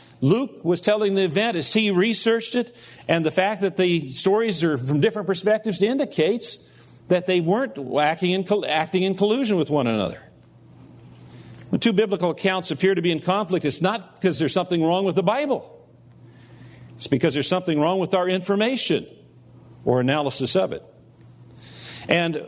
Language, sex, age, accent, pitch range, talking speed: English, male, 50-69, American, 125-185 Hz, 165 wpm